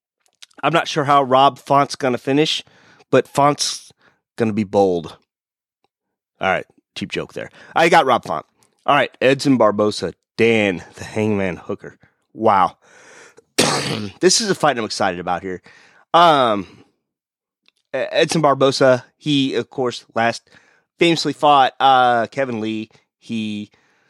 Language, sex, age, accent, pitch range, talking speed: English, male, 30-49, American, 105-145 Hz, 135 wpm